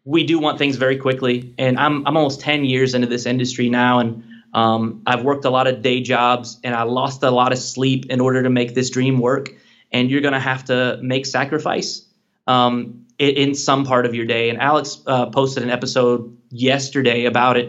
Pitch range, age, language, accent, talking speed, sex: 120-140 Hz, 20-39, English, American, 210 wpm, male